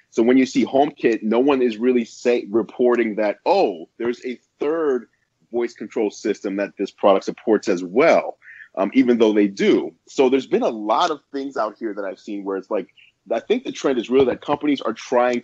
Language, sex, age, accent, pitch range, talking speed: English, male, 30-49, American, 100-130 Hz, 210 wpm